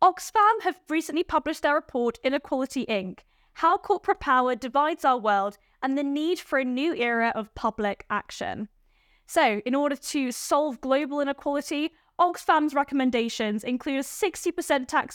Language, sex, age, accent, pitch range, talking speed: English, female, 10-29, British, 230-310 Hz, 145 wpm